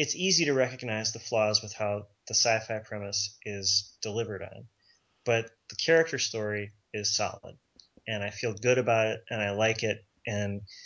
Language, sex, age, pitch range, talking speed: English, male, 30-49, 105-130 Hz, 170 wpm